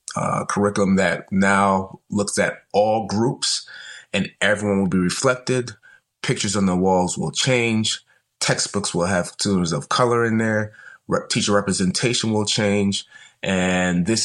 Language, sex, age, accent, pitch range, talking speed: English, male, 30-49, American, 95-110 Hz, 145 wpm